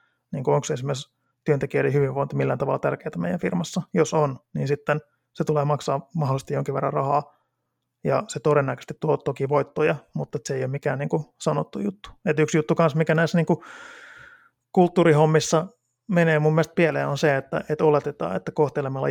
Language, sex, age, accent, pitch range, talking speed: Finnish, male, 20-39, native, 140-160 Hz, 170 wpm